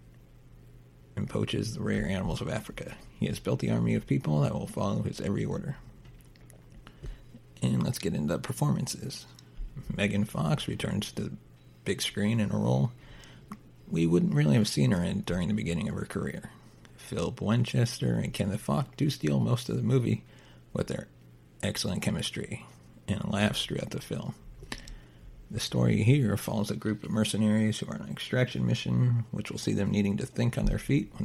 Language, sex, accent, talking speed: English, male, American, 180 wpm